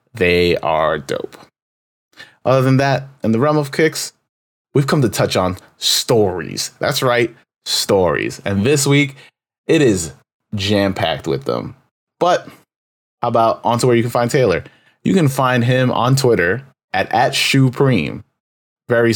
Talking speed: 155 wpm